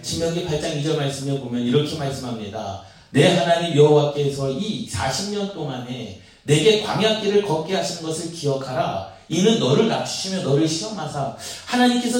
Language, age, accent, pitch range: Korean, 40-59, native, 155-225 Hz